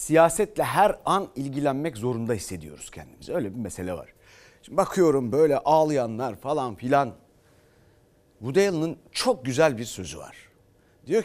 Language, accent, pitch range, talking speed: Turkish, native, 110-170 Hz, 130 wpm